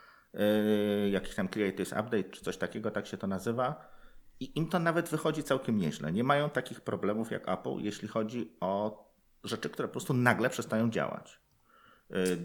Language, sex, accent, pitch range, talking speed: Polish, male, native, 100-120 Hz, 175 wpm